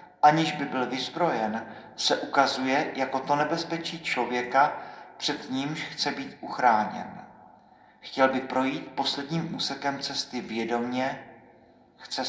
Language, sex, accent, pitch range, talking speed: Czech, male, native, 125-145 Hz, 110 wpm